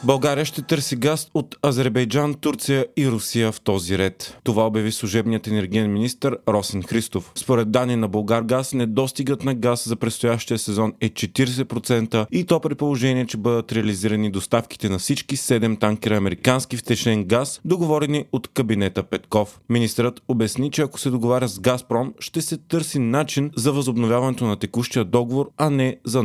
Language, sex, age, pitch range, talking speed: Bulgarian, male, 30-49, 110-135 Hz, 160 wpm